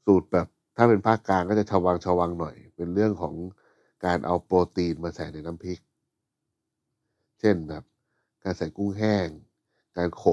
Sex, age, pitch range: male, 60-79, 85-105 Hz